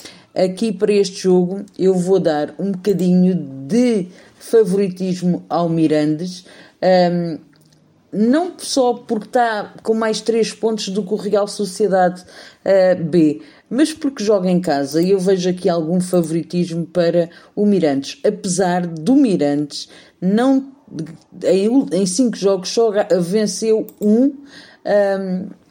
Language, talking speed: Portuguese, 125 wpm